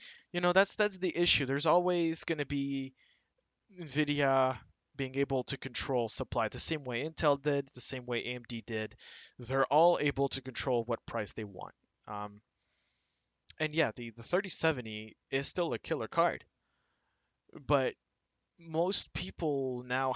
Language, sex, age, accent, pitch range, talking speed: English, male, 20-39, American, 120-155 Hz, 150 wpm